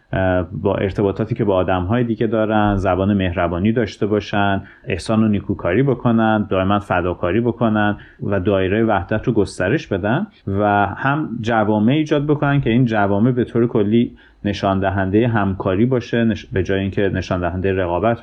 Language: Persian